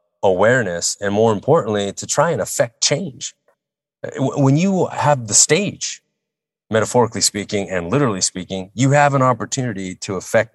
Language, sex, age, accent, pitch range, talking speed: English, male, 30-49, American, 90-110 Hz, 140 wpm